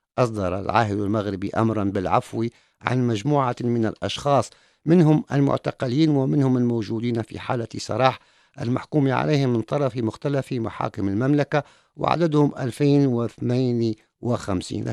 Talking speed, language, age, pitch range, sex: 110 wpm, English, 50-69, 100-130 Hz, male